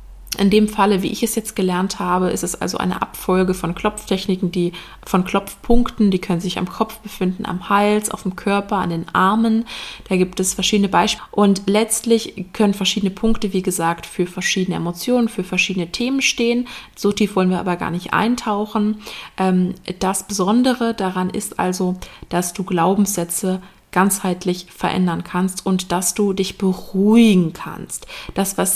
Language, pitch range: German, 185-215 Hz